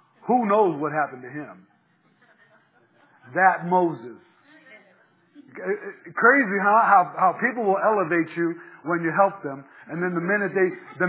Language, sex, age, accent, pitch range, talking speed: English, male, 50-69, American, 170-225 Hz, 140 wpm